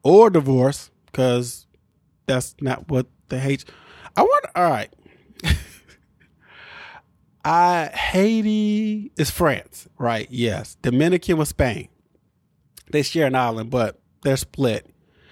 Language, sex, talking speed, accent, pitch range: English, male, 110 wpm, American, 130-175 Hz